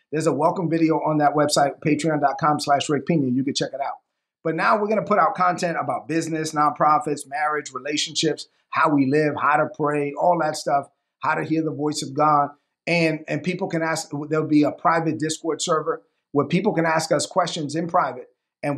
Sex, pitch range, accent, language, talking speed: male, 150-170 Hz, American, English, 205 wpm